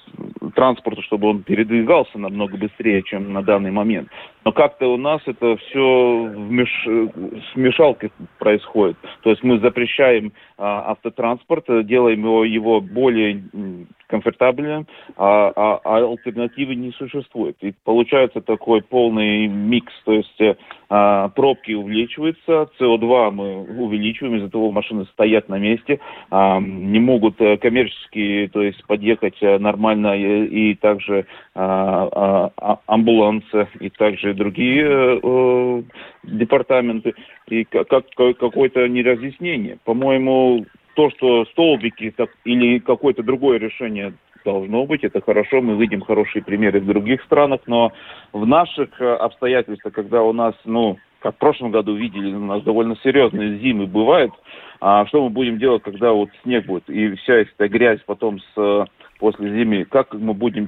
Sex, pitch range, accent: male, 105-125 Hz, native